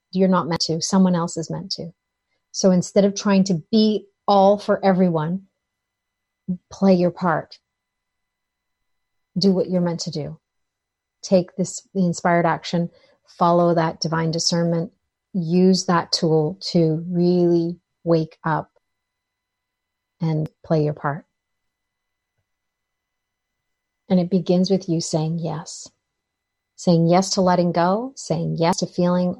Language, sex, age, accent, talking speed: English, female, 40-59, American, 130 wpm